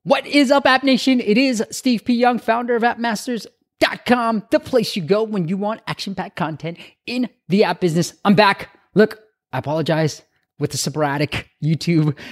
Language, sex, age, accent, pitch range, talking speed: English, male, 20-39, American, 110-165 Hz, 175 wpm